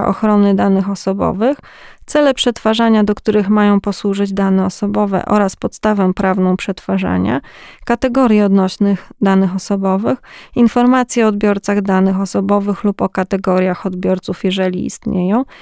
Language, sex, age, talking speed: Polish, female, 20-39, 115 wpm